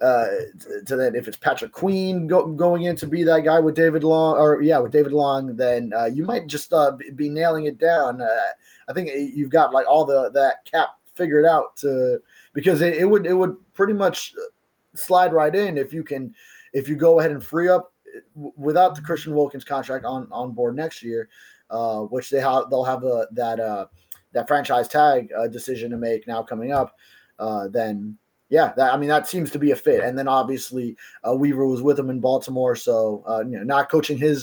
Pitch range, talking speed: 130-165 Hz, 220 wpm